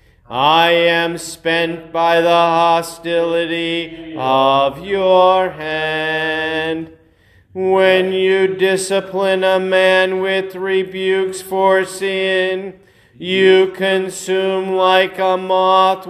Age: 40-59